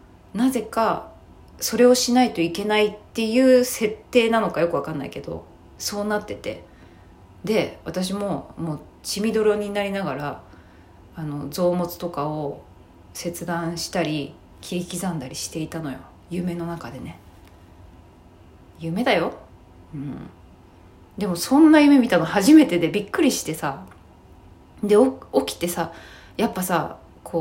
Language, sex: Japanese, female